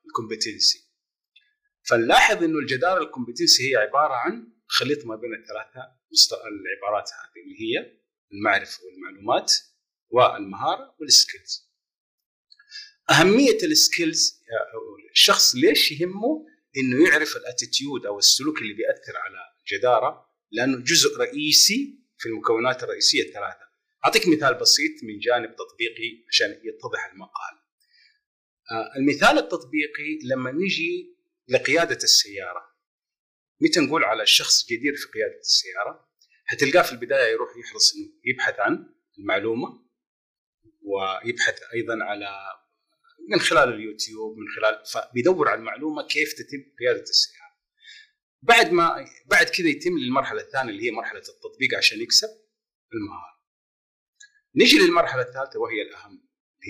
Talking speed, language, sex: 115 wpm, Arabic, male